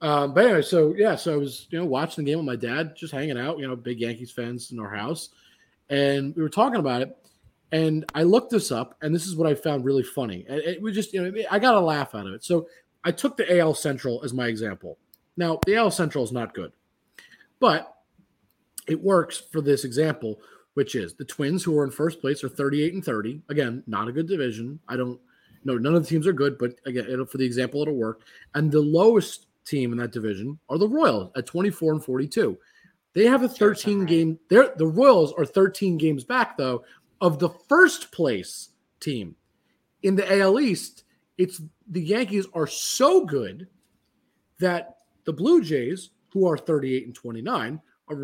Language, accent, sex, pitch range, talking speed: English, American, male, 130-185 Hz, 210 wpm